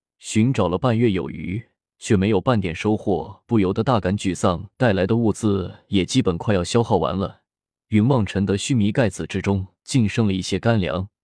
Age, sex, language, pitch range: 20-39, male, Chinese, 95-115 Hz